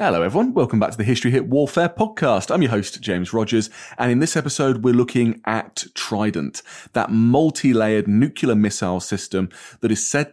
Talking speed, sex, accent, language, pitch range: 180 wpm, male, British, English, 100-130 Hz